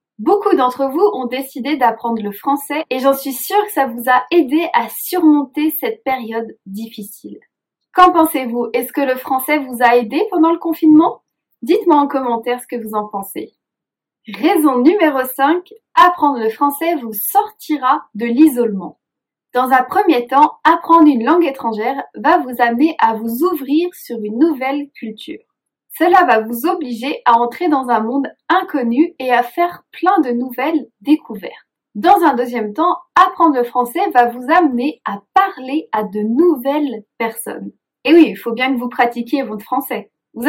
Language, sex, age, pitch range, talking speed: French, female, 20-39, 240-325 Hz, 170 wpm